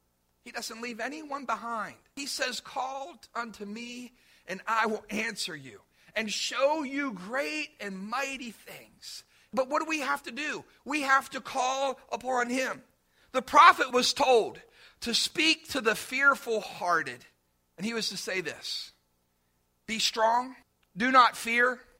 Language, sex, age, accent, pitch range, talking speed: English, male, 40-59, American, 210-275 Hz, 155 wpm